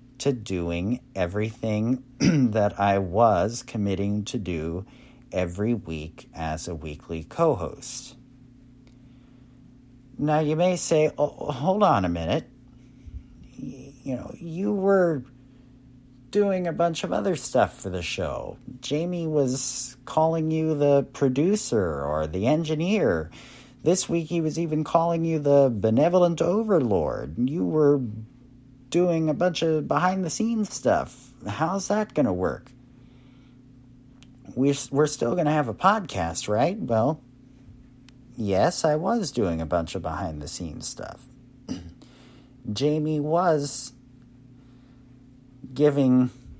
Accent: American